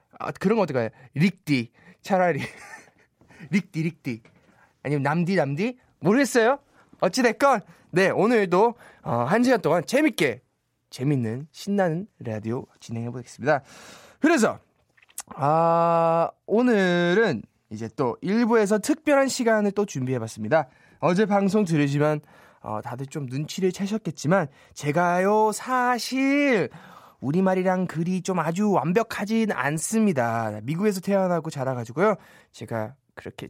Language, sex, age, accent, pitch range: Korean, male, 20-39, native, 150-245 Hz